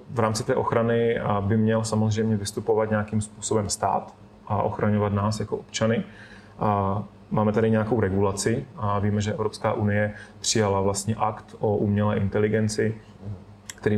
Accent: native